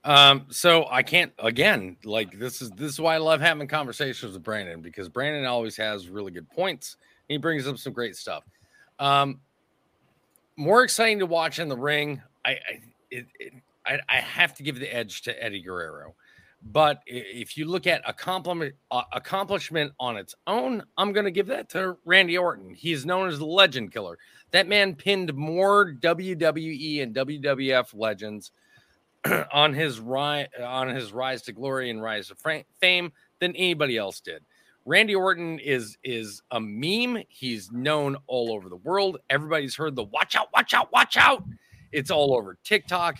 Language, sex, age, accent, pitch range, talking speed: English, male, 30-49, American, 125-175 Hz, 175 wpm